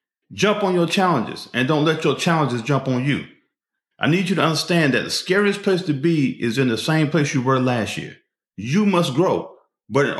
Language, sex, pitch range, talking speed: English, male, 140-190 Hz, 220 wpm